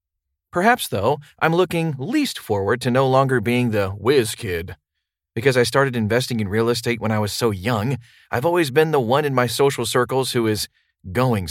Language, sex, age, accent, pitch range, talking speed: English, male, 40-59, American, 105-140 Hz, 195 wpm